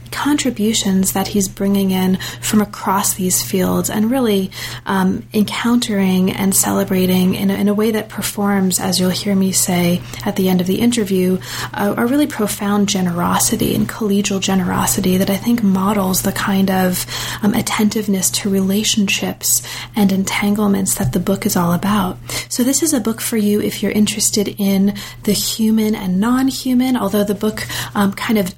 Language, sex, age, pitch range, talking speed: English, female, 30-49, 185-215 Hz, 170 wpm